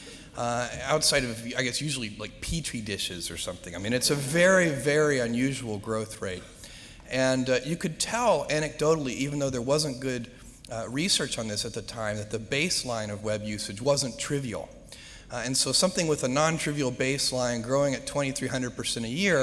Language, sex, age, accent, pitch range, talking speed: English, male, 40-59, American, 115-145 Hz, 180 wpm